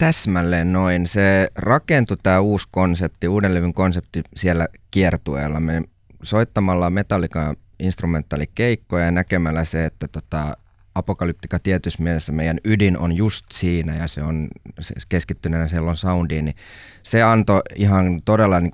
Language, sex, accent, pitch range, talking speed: Finnish, male, native, 85-100 Hz, 135 wpm